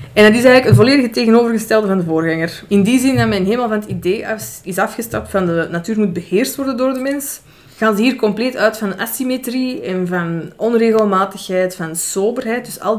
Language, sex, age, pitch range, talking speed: Dutch, female, 20-39, 190-235 Hz, 210 wpm